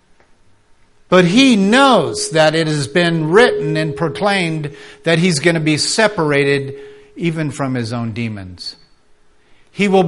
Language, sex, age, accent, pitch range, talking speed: English, male, 50-69, American, 115-150 Hz, 135 wpm